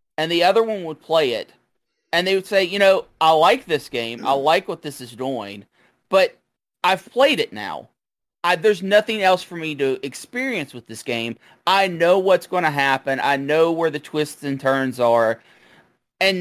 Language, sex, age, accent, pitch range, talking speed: English, male, 30-49, American, 135-190 Hz, 195 wpm